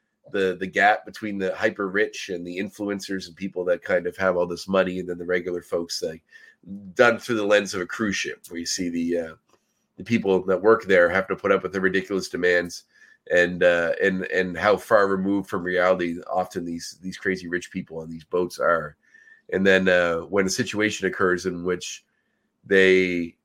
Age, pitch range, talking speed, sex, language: 30-49, 85-105 Hz, 205 wpm, male, English